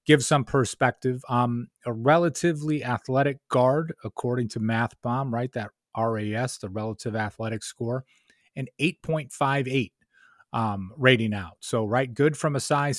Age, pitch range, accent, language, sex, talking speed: 30-49, 115-140 Hz, American, English, male, 140 wpm